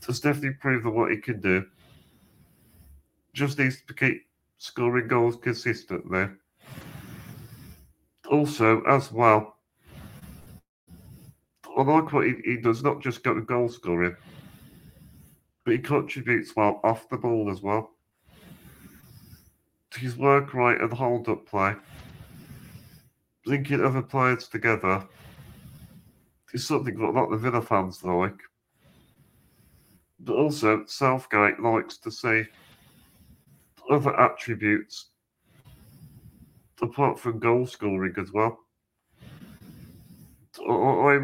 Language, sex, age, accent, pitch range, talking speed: English, male, 40-59, British, 105-130 Hz, 105 wpm